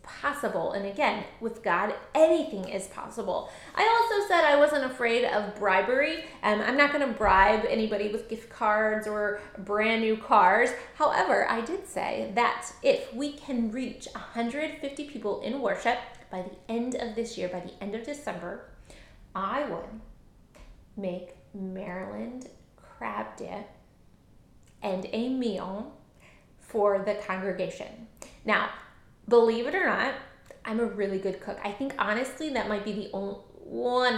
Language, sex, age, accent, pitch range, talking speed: English, female, 20-39, American, 195-255 Hz, 150 wpm